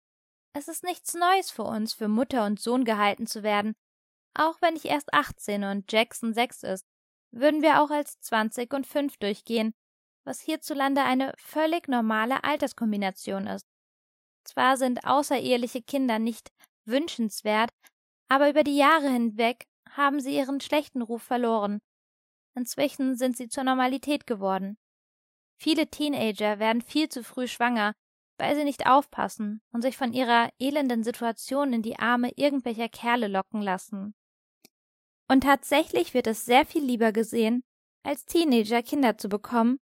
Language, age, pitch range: German, 20-39, 220-275 Hz